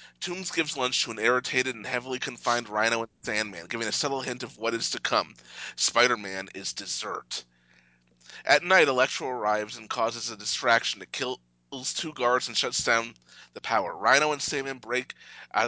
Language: English